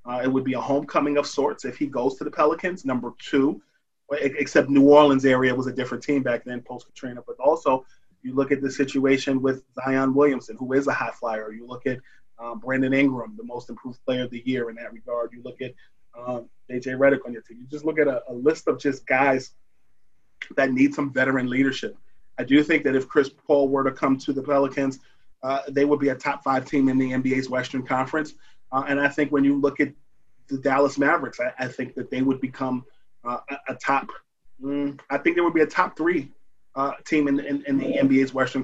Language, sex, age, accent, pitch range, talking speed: English, male, 30-49, American, 125-140 Hz, 230 wpm